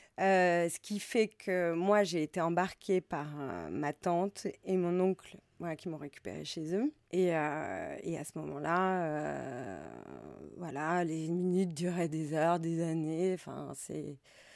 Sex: female